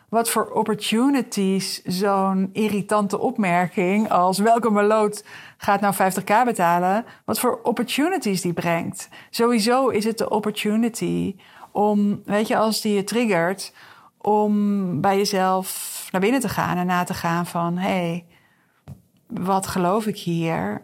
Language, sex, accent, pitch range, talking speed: Dutch, female, Dutch, 190-225 Hz, 135 wpm